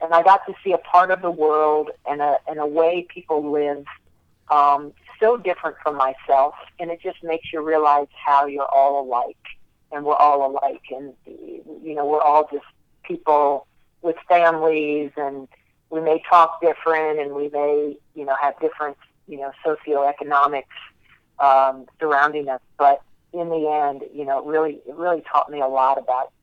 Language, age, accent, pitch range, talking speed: English, 50-69, American, 135-160 Hz, 175 wpm